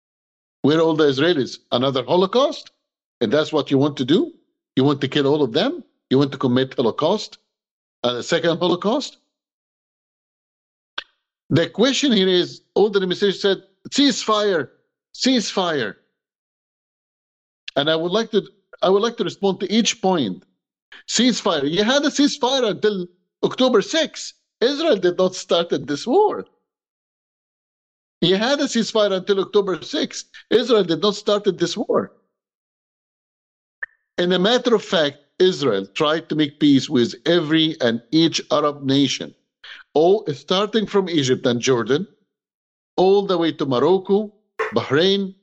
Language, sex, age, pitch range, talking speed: English, male, 50-69, 155-225 Hz, 145 wpm